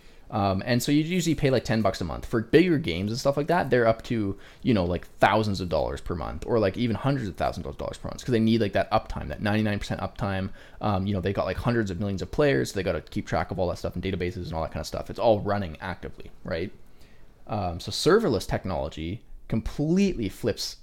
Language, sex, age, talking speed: English, male, 20-39, 255 wpm